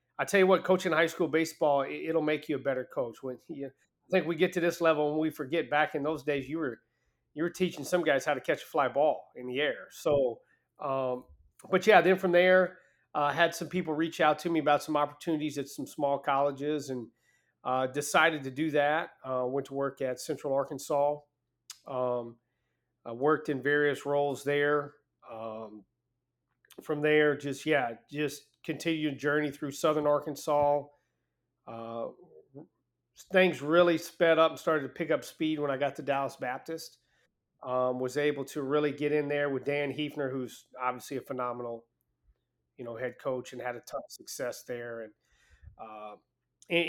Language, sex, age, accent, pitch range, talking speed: English, male, 40-59, American, 130-155 Hz, 185 wpm